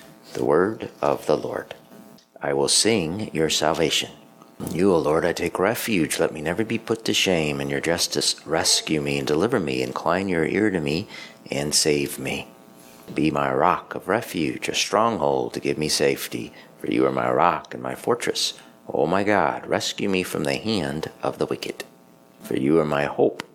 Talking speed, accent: 190 wpm, American